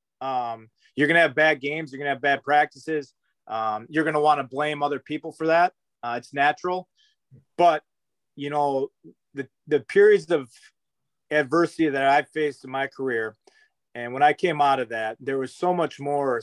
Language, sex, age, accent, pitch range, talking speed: English, male, 30-49, American, 130-155 Hz, 195 wpm